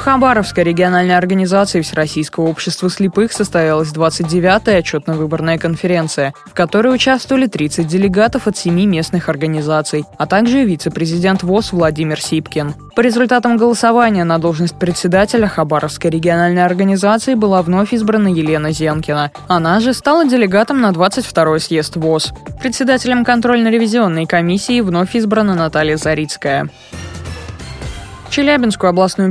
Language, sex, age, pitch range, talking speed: Russian, female, 20-39, 165-225 Hz, 115 wpm